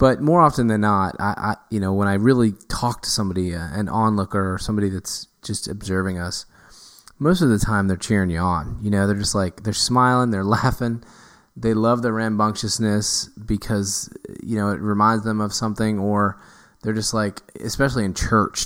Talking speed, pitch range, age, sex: 195 wpm, 100-110 Hz, 20-39, male